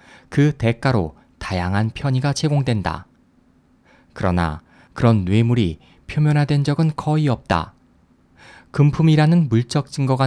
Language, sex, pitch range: Korean, male, 105-150 Hz